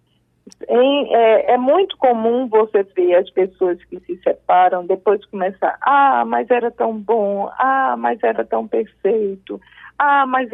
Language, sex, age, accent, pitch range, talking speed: Portuguese, female, 50-69, Brazilian, 205-285 Hz, 140 wpm